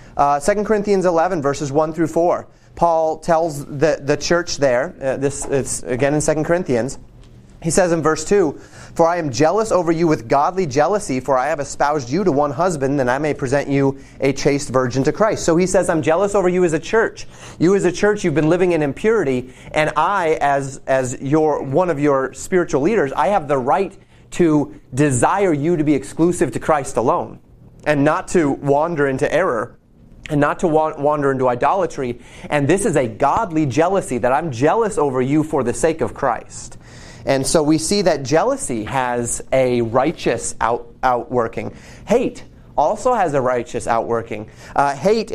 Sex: male